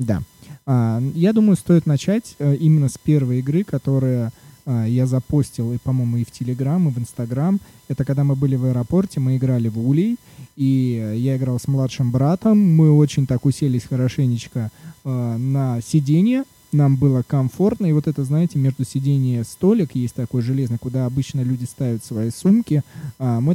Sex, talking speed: male, 160 wpm